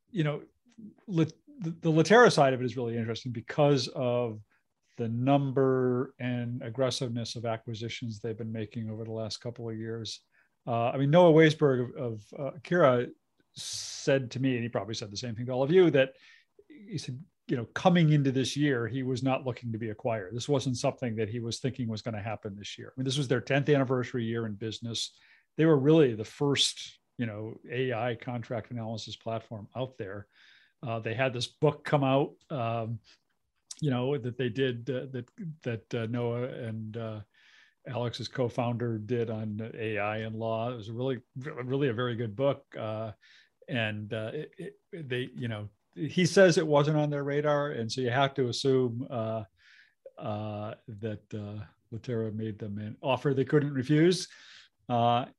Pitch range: 115-140 Hz